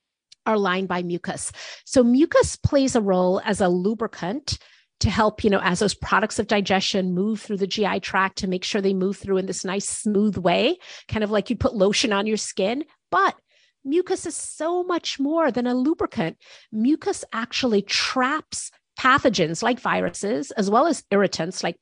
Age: 30-49